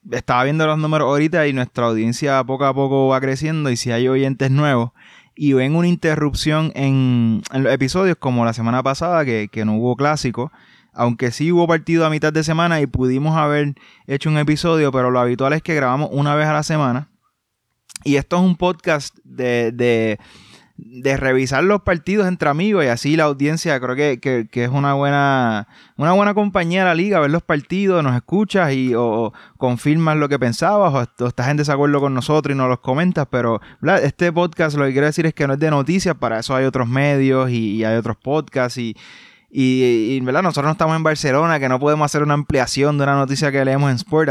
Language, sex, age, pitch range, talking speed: Spanish, male, 20-39, 130-155 Hz, 215 wpm